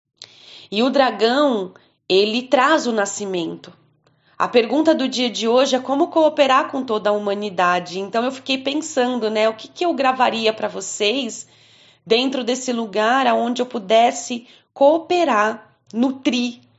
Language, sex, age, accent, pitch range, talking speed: Portuguese, female, 20-39, Brazilian, 210-245 Hz, 145 wpm